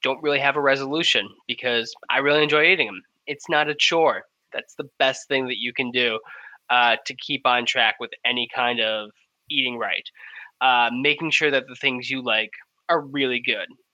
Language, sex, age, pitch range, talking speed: English, male, 10-29, 130-160 Hz, 195 wpm